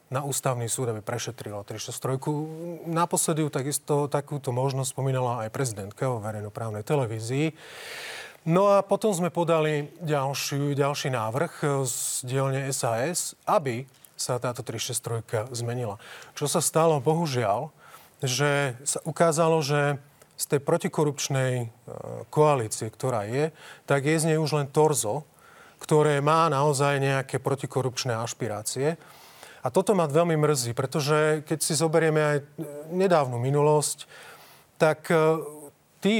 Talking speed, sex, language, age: 120 wpm, male, Slovak, 30-49